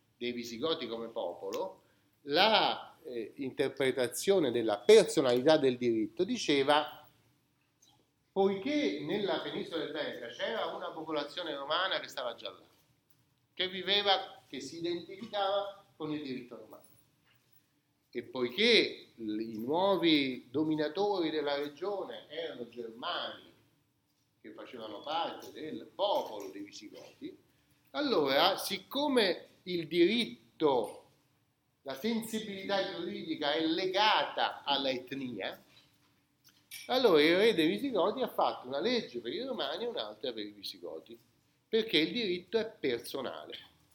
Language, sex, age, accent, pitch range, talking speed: Italian, male, 40-59, native, 145-220 Hz, 115 wpm